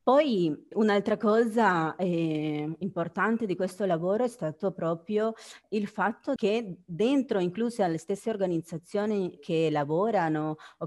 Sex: female